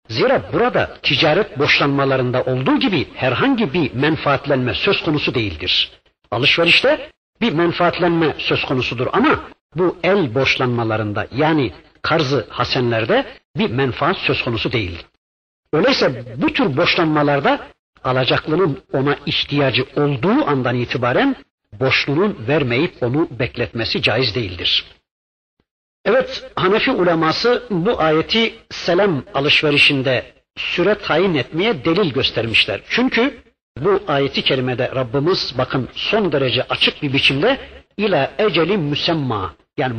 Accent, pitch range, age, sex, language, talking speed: native, 130-185 Hz, 60-79, male, Turkish, 110 wpm